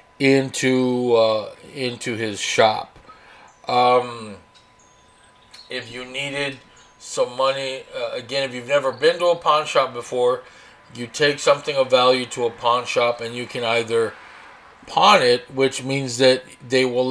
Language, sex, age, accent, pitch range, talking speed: English, male, 40-59, American, 125-155 Hz, 145 wpm